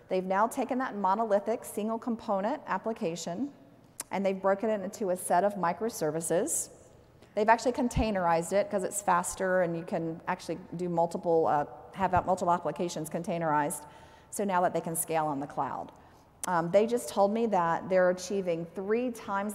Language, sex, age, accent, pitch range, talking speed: English, female, 40-59, American, 170-215 Hz, 165 wpm